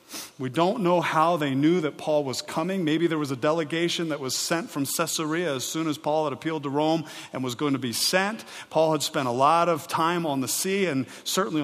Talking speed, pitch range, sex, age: 235 wpm, 155-215 Hz, male, 40-59